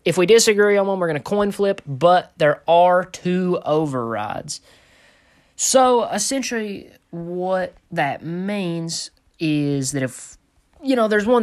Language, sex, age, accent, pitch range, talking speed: English, male, 20-39, American, 130-180 Hz, 140 wpm